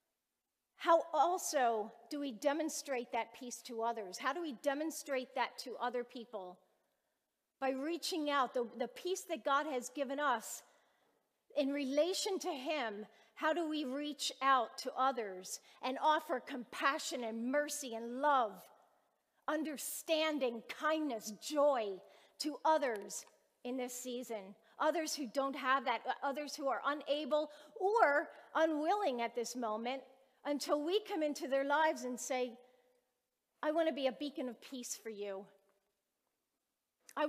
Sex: female